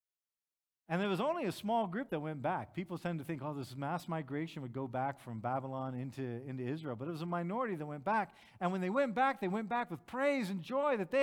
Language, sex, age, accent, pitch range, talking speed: English, male, 50-69, American, 145-200 Hz, 260 wpm